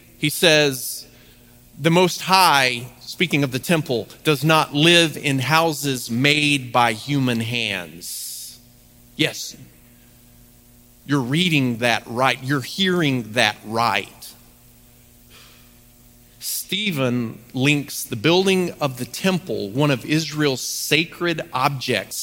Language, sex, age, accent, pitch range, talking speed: English, male, 40-59, American, 120-150 Hz, 105 wpm